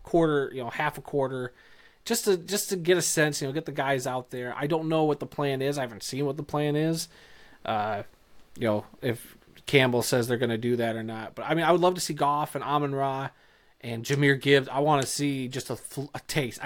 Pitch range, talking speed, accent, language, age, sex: 130-155 Hz, 250 wpm, American, English, 30-49, male